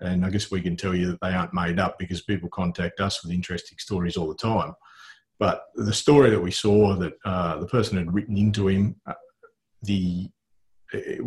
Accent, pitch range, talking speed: Australian, 90-110 Hz, 210 wpm